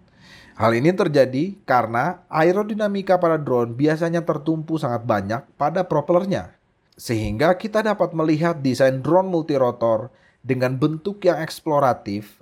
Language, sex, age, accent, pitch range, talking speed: Indonesian, male, 30-49, native, 120-170 Hz, 115 wpm